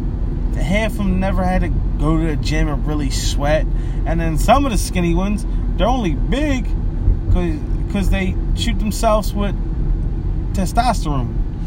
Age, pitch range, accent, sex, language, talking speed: 30-49, 90-155 Hz, American, male, English, 155 wpm